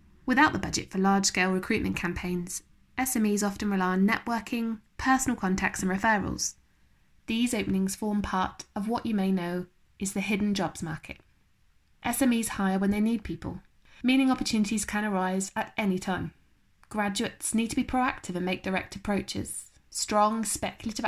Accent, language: British, English